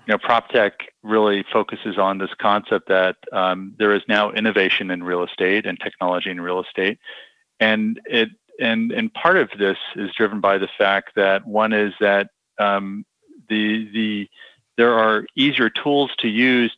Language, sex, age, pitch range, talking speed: English, male, 40-59, 100-115 Hz, 170 wpm